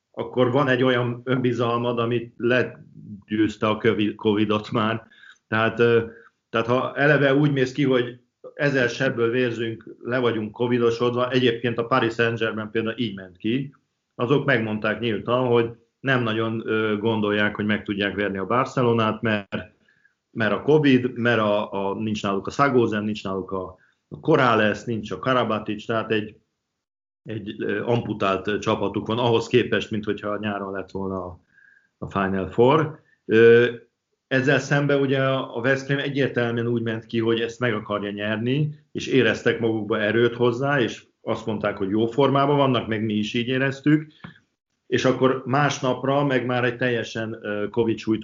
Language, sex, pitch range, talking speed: Hungarian, male, 105-125 Hz, 145 wpm